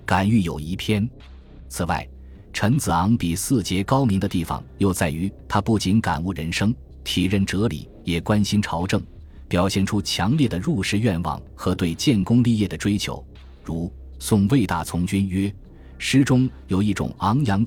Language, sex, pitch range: Chinese, male, 85-105 Hz